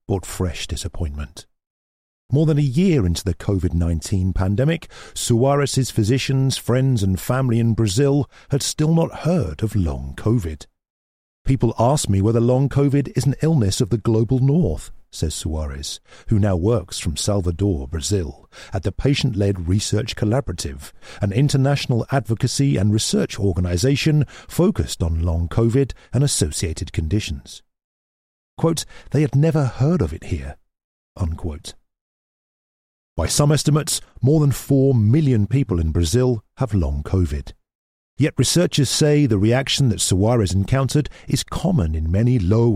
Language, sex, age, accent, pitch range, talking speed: English, male, 50-69, British, 90-135 Hz, 135 wpm